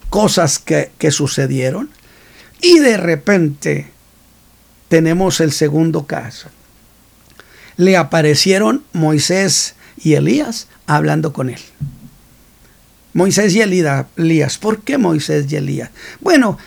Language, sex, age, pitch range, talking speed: Spanish, male, 50-69, 145-195 Hz, 100 wpm